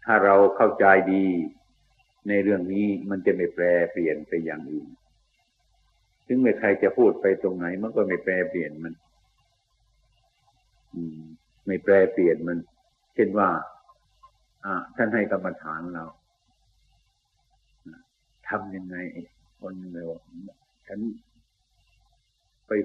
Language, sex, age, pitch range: Thai, male, 60-79, 90-110 Hz